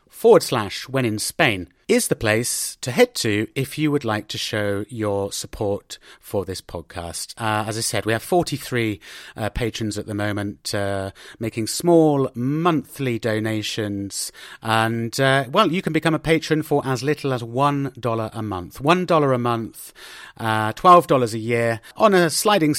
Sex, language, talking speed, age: male, English, 170 wpm, 30-49